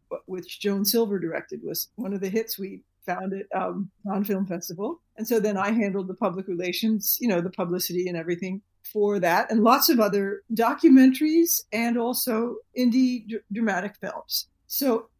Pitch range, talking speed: 200-250 Hz, 165 wpm